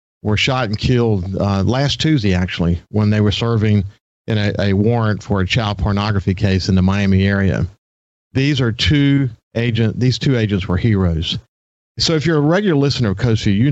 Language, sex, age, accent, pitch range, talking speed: English, male, 50-69, American, 95-115 Hz, 190 wpm